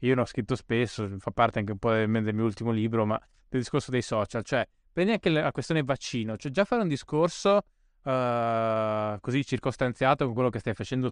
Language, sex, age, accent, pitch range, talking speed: Italian, male, 20-39, native, 115-150 Hz, 200 wpm